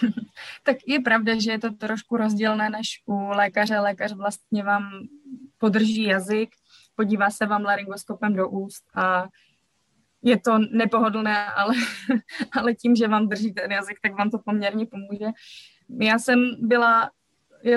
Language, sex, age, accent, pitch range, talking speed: Czech, female, 20-39, native, 205-235 Hz, 145 wpm